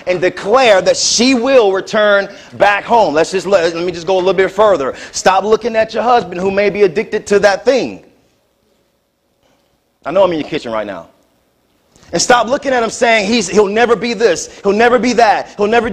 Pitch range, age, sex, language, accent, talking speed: 195-245 Hz, 30-49, male, English, American, 210 wpm